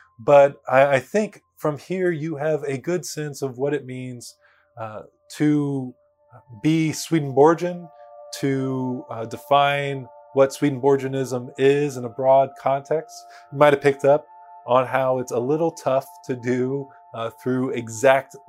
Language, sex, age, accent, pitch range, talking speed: English, male, 20-39, American, 130-150 Hz, 145 wpm